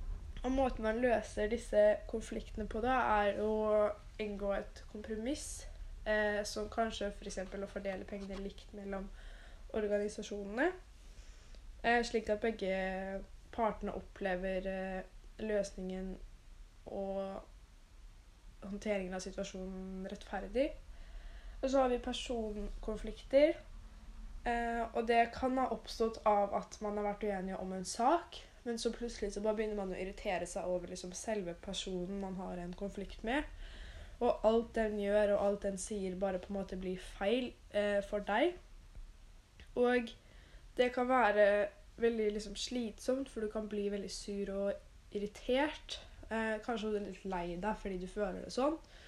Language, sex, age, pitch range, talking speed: English, female, 10-29, 195-230 Hz, 145 wpm